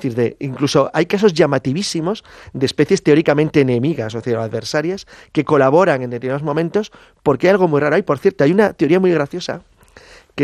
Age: 30-49